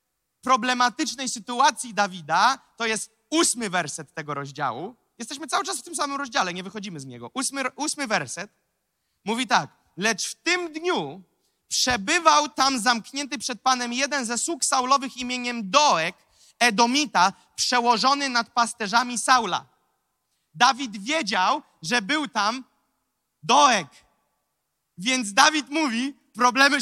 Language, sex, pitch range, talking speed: Polish, male, 220-280 Hz, 125 wpm